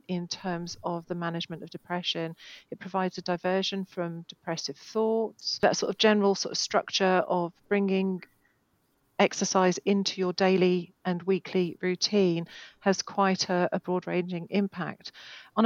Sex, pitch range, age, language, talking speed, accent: female, 165-190 Hz, 40-59, English, 145 wpm, British